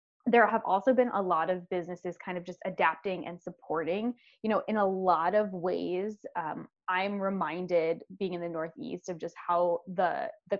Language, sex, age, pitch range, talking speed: English, female, 10-29, 170-210 Hz, 185 wpm